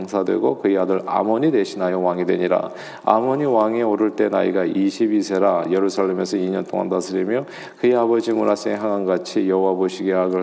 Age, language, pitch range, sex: 40-59, Korean, 95-110 Hz, male